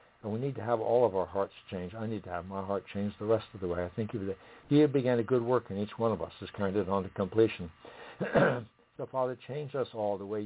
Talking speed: 280 wpm